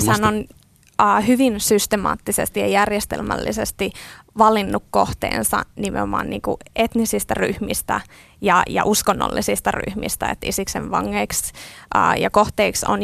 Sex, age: female, 20-39